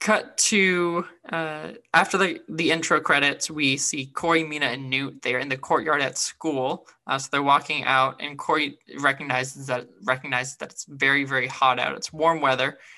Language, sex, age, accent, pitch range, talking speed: English, male, 20-39, American, 130-160 Hz, 180 wpm